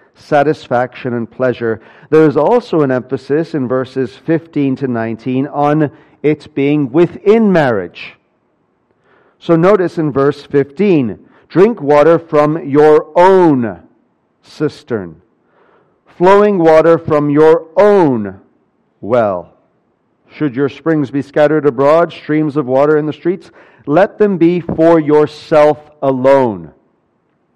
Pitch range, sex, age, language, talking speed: 130-160 Hz, male, 40-59, English, 115 wpm